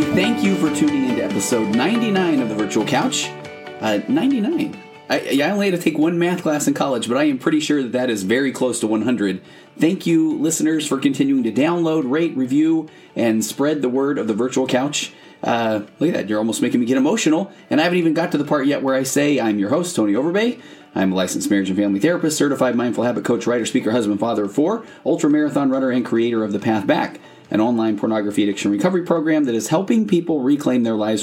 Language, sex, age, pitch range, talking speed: English, male, 30-49, 105-170 Hz, 230 wpm